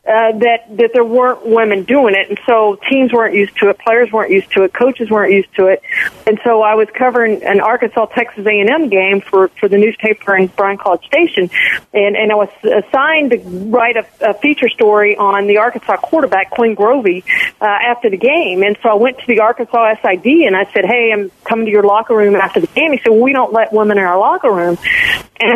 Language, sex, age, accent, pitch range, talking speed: English, female, 40-59, American, 195-230 Hz, 225 wpm